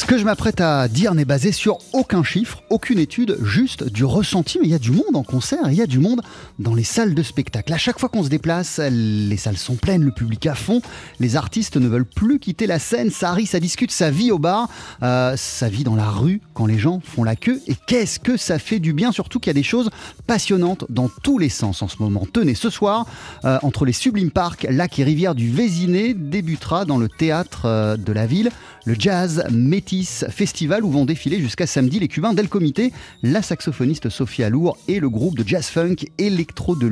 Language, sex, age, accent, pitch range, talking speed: French, male, 30-49, French, 125-195 Hz, 230 wpm